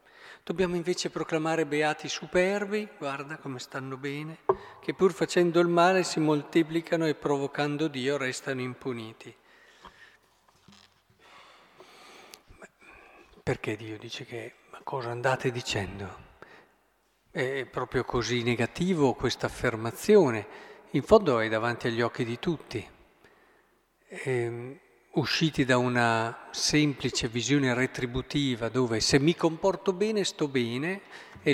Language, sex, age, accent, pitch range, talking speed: Italian, male, 50-69, native, 125-165 Hz, 110 wpm